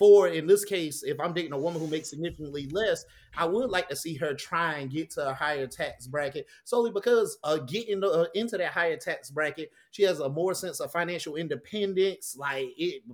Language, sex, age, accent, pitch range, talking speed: English, male, 30-49, American, 155-210 Hz, 220 wpm